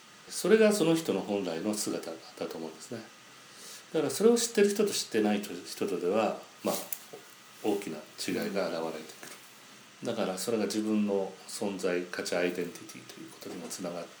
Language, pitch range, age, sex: Japanese, 100-165 Hz, 40-59, male